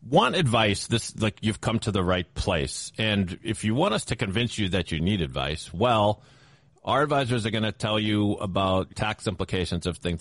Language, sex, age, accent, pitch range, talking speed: English, male, 40-59, American, 100-140 Hz, 205 wpm